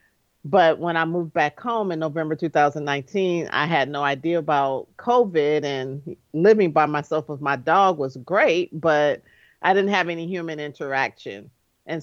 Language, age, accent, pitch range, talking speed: English, 40-59, American, 150-185 Hz, 160 wpm